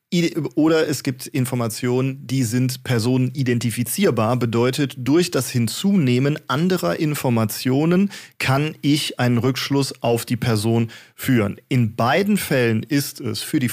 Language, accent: German, German